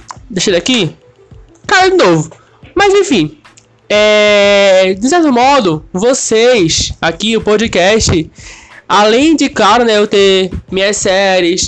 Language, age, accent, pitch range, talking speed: Portuguese, 20-39, Brazilian, 190-265 Hz, 125 wpm